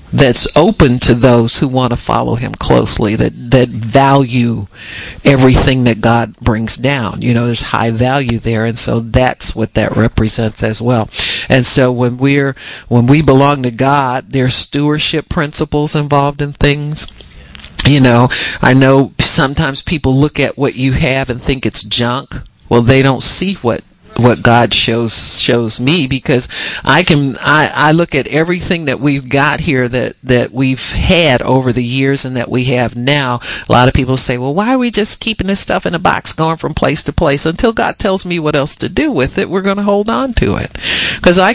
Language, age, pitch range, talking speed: English, 50-69, 120-150 Hz, 195 wpm